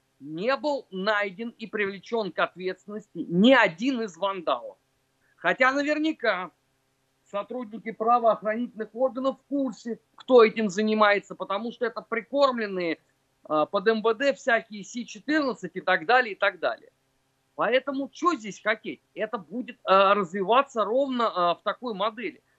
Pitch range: 195-255 Hz